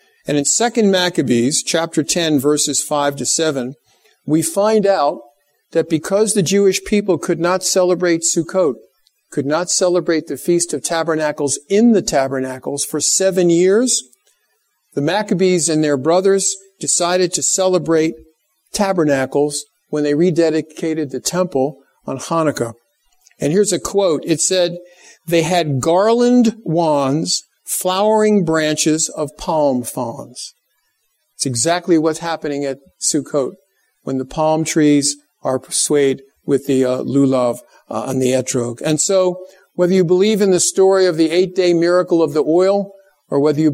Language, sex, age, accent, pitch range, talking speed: English, male, 50-69, American, 140-180 Hz, 145 wpm